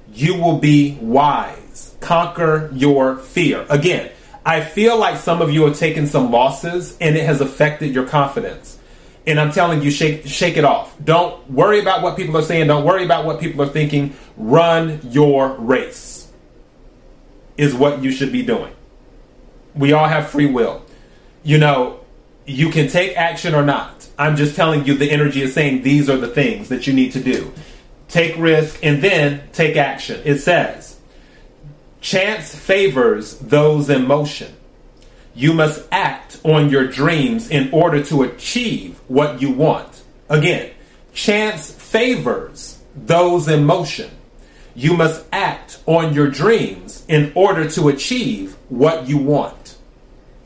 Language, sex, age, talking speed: English, male, 30-49, 155 wpm